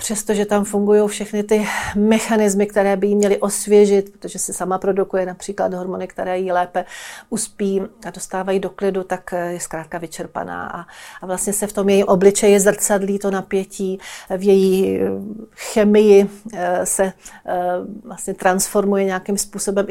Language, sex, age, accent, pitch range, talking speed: Czech, female, 40-59, native, 185-205 Hz, 140 wpm